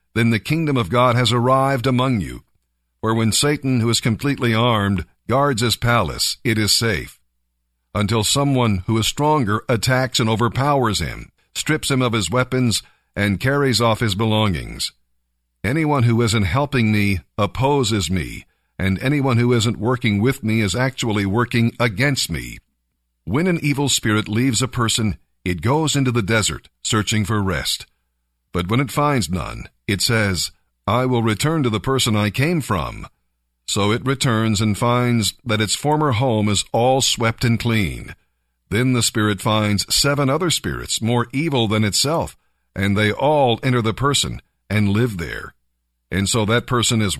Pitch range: 100-130 Hz